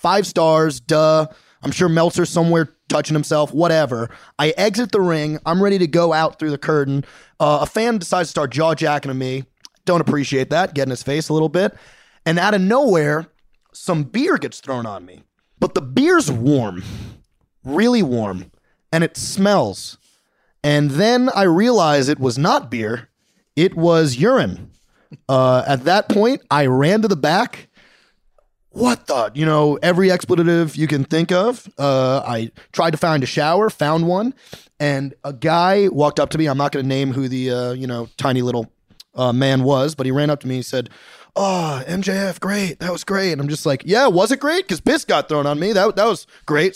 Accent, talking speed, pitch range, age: American, 195 wpm, 140-190 Hz, 30-49